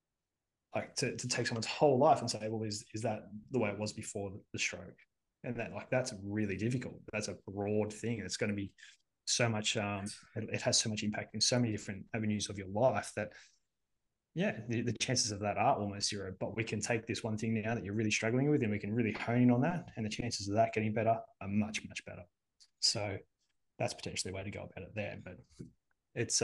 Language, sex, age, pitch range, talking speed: English, male, 20-39, 105-120 Hz, 240 wpm